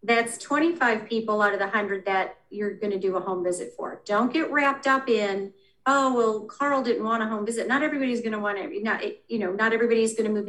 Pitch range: 205-235 Hz